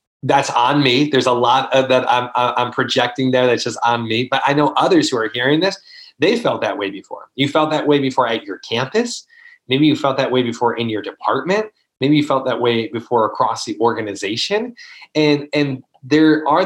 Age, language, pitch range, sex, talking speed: 30-49, English, 115-150 Hz, male, 215 wpm